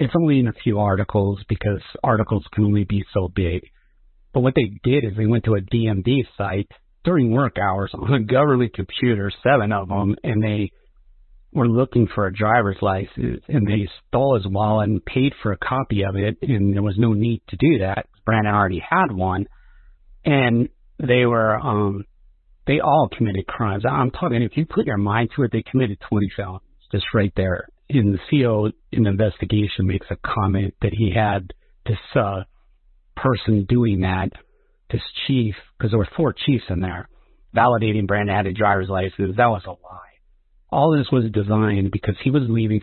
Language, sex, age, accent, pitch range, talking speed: English, male, 50-69, American, 100-120 Hz, 185 wpm